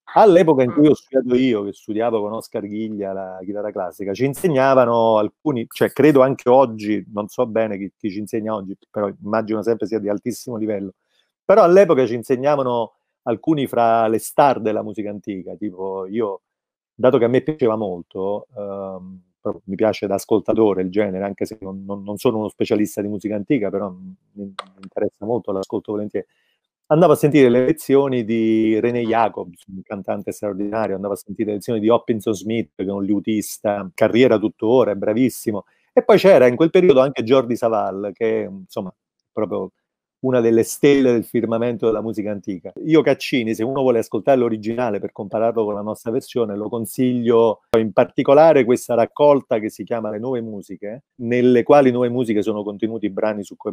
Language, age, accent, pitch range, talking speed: Italian, 40-59, native, 100-120 Hz, 180 wpm